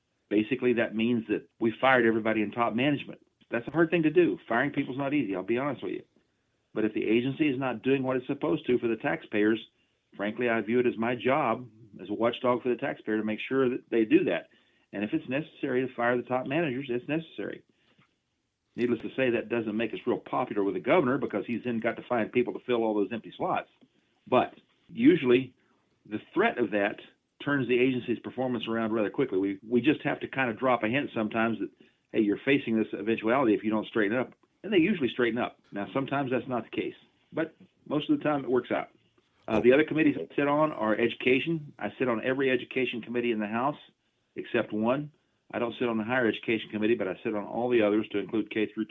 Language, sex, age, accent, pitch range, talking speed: English, male, 40-59, American, 110-130 Hz, 235 wpm